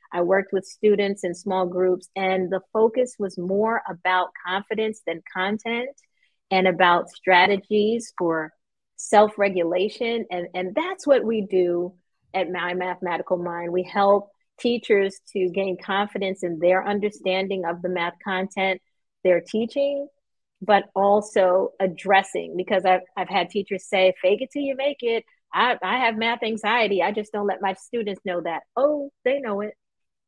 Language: English